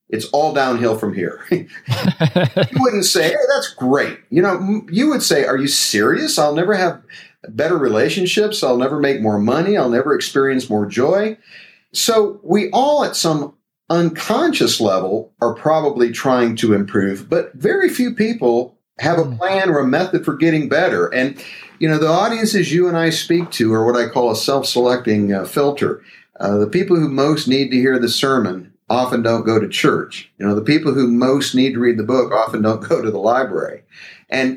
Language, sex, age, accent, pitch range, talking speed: English, male, 50-69, American, 115-165 Hz, 190 wpm